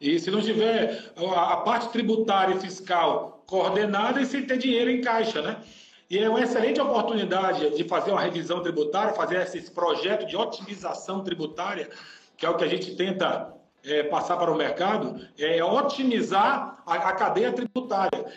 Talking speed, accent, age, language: 165 wpm, Brazilian, 40-59, Portuguese